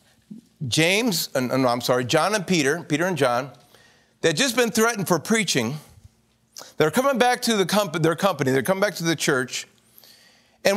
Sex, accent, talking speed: male, American, 180 wpm